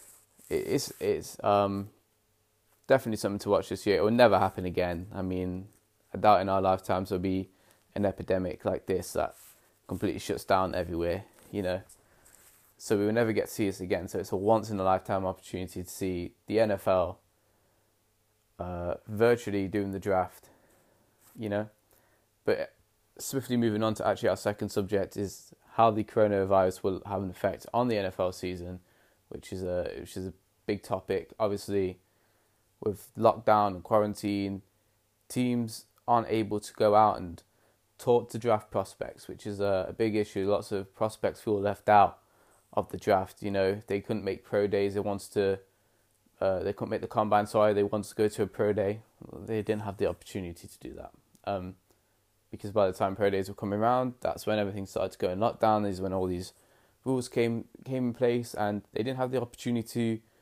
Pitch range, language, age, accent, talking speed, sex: 95-110 Hz, English, 20-39, British, 185 wpm, male